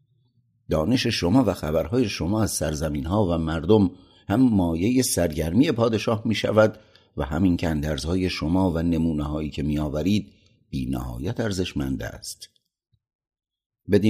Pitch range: 75-105 Hz